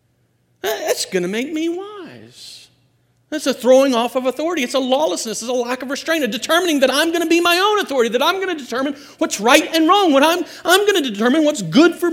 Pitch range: 200-280 Hz